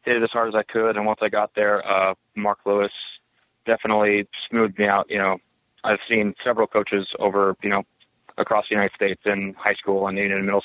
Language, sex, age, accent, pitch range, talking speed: English, male, 20-39, American, 95-105 Hz, 220 wpm